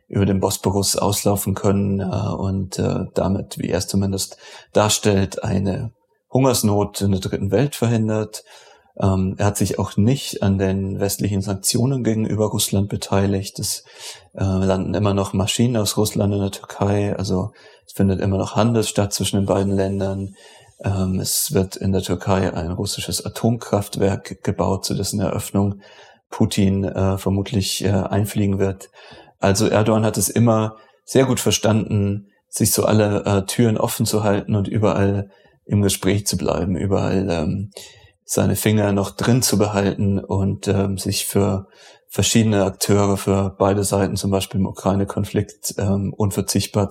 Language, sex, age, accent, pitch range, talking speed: German, male, 30-49, German, 95-105 Hz, 145 wpm